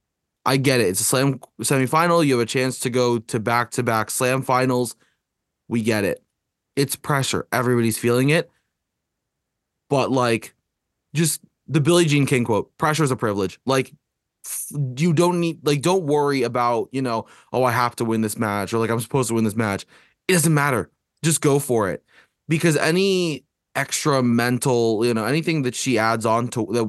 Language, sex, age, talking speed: English, male, 20-39, 185 wpm